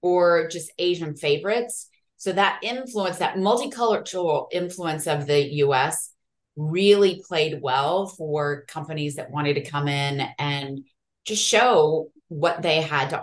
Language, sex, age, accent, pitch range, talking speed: English, female, 30-49, American, 150-185 Hz, 135 wpm